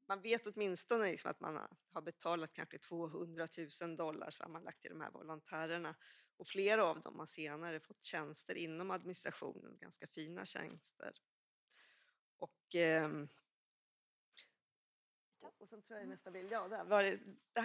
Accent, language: Swedish, English